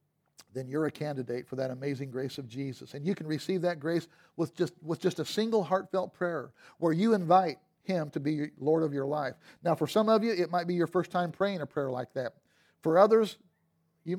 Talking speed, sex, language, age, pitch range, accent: 225 wpm, male, English, 50-69, 145-180 Hz, American